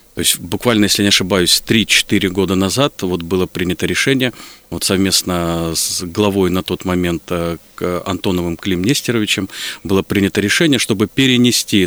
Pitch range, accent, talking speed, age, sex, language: 95-115 Hz, native, 145 wpm, 40-59, male, Russian